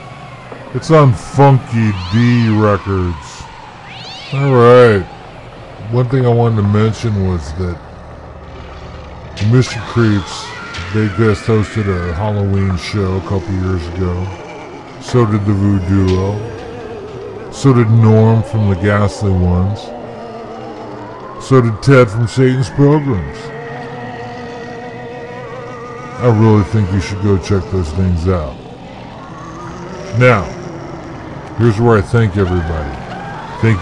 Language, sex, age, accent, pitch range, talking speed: English, female, 60-79, American, 95-120 Hz, 110 wpm